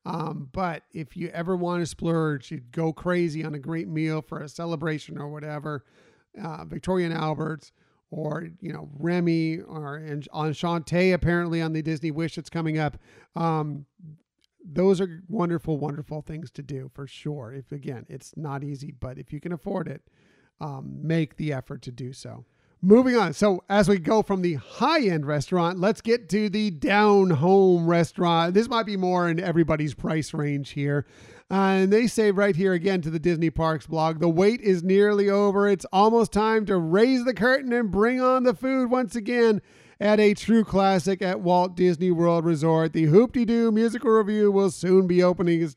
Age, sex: 40-59, male